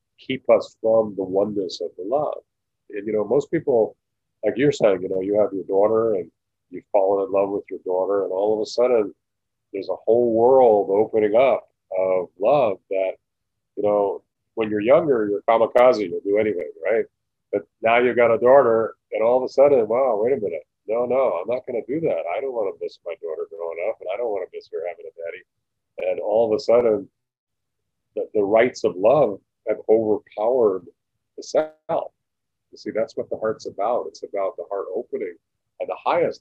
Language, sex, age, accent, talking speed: English, male, 40-59, American, 210 wpm